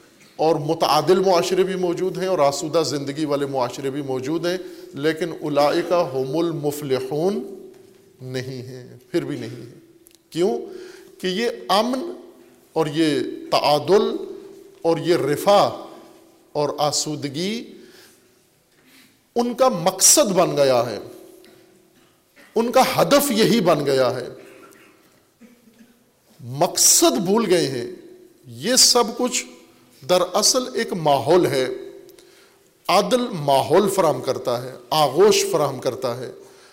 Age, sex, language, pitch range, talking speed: 50-69, male, Urdu, 150-250 Hz, 115 wpm